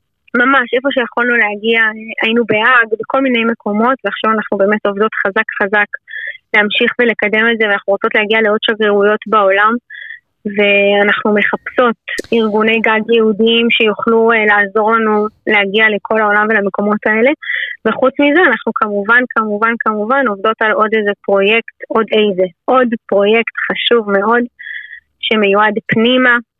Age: 20-39